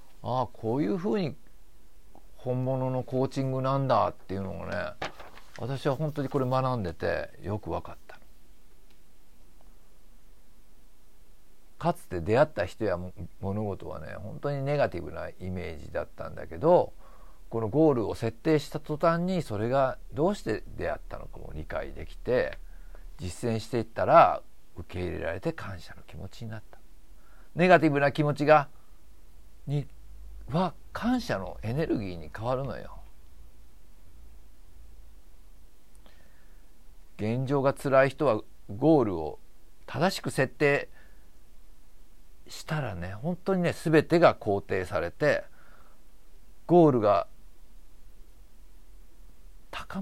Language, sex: Japanese, male